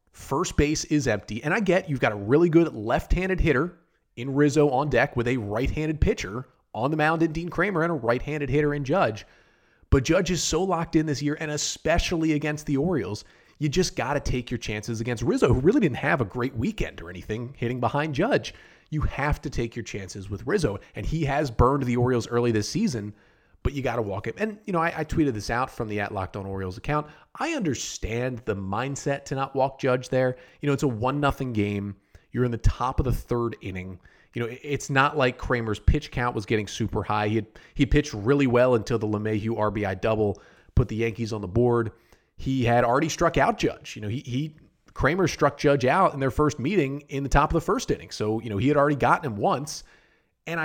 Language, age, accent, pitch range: English, 30-49, American, 110-150 Hz